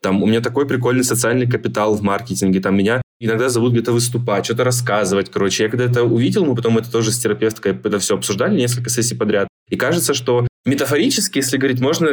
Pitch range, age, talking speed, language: 105-125 Hz, 20-39, 205 wpm, Russian